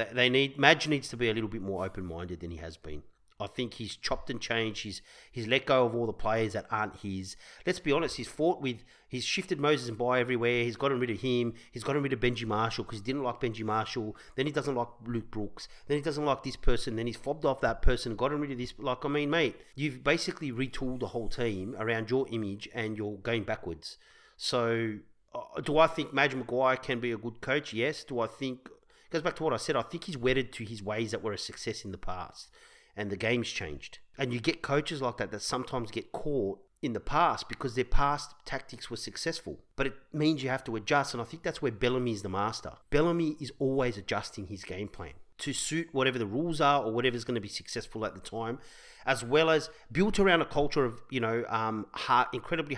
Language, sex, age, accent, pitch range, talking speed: English, male, 40-59, Australian, 110-135 Hz, 240 wpm